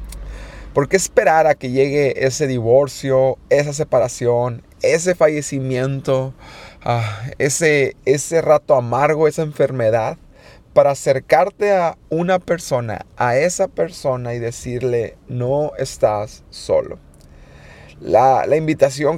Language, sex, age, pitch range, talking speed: Spanish, male, 30-49, 125-160 Hz, 110 wpm